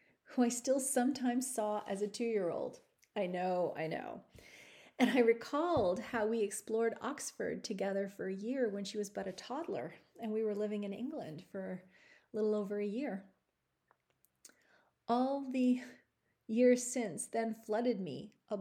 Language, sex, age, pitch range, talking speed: English, female, 30-49, 205-255 Hz, 160 wpm